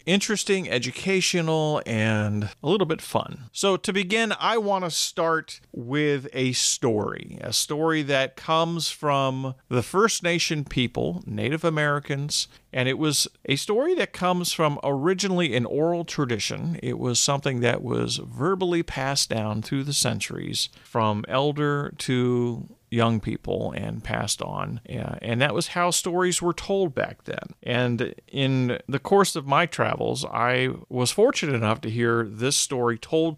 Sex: male